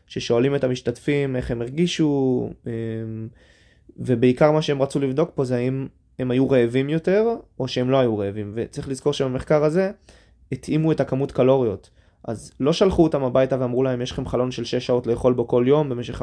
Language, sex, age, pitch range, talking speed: Hebrew, male, 20-39, 125-145 Hz, 180 wpm